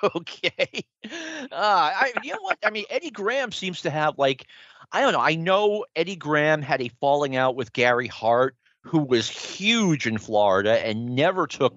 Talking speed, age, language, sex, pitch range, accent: 185 wpm, 40-59, English, male, 120-165 Hz, American